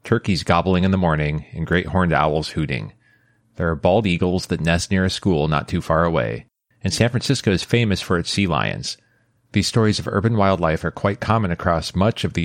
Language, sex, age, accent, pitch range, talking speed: English, male, 30-49, American, 80-105 Hz, 210 wpm